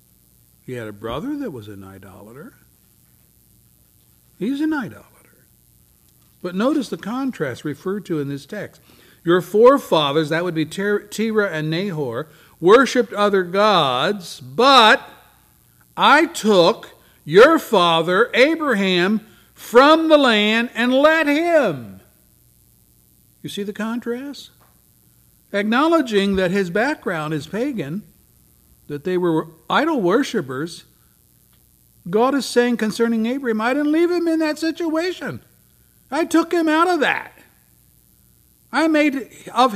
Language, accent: English, American